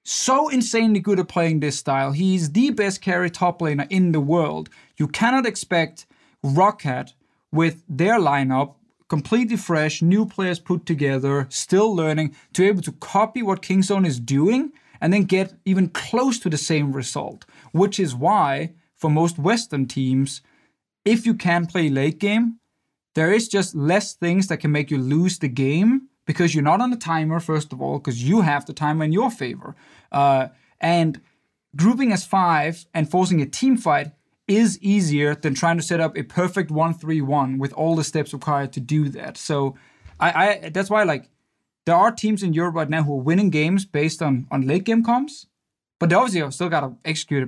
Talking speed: 190 wpm